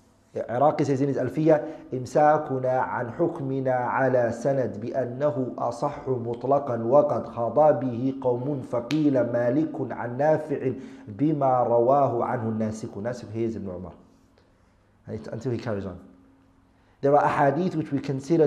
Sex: male